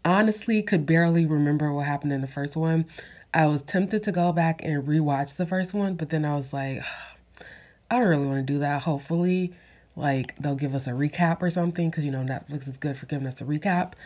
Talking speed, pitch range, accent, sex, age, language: 225 wpm, 135-170 Hz, American, female, 20-39, English